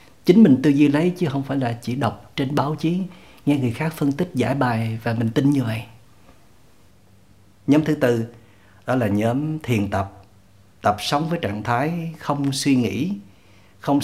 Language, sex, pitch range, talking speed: Vietnamese, male, 105-140 Hz, 185 wpm